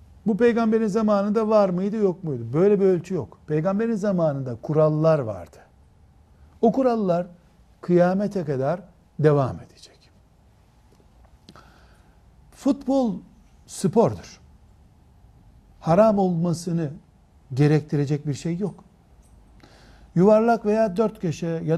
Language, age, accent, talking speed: Turkish, 60-79, native, 95 wpm